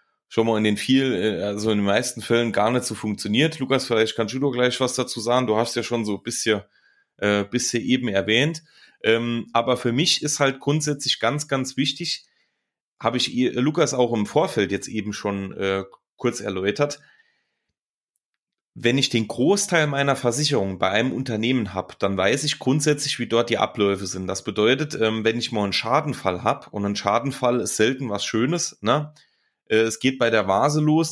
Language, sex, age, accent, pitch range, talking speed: German, male, 30-49, German, 110-145 Hz, 190 wpm